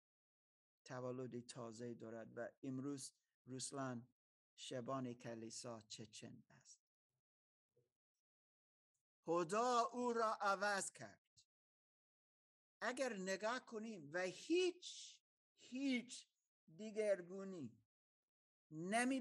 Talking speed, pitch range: 75 wpm, 165-265 Hz